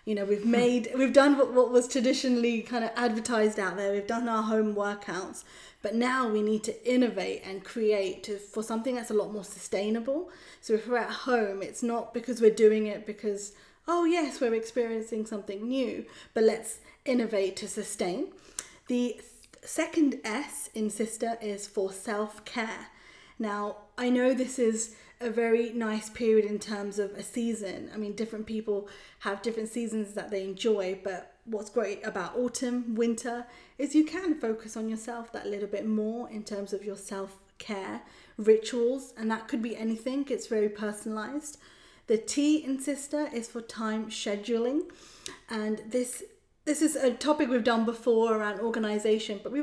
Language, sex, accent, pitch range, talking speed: English, female, British, 210-250 Hz, 170 wpm